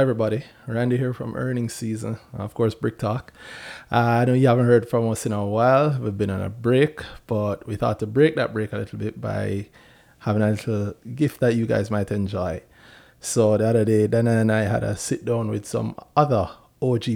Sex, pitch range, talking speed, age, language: male, 105-120 Hz, 215 wpm, 20-39, English